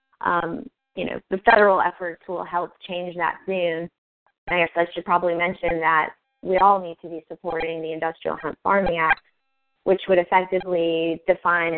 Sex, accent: female, American